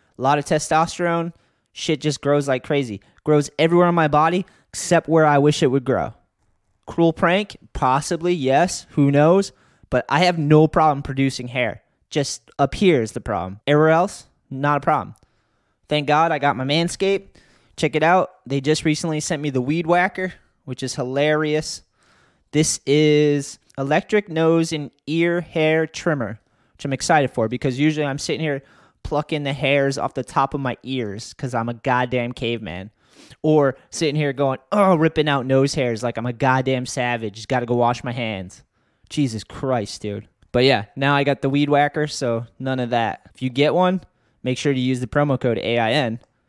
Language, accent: English, American